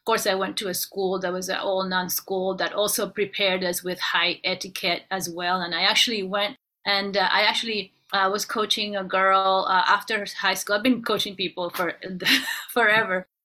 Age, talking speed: 30-49, 200 wpm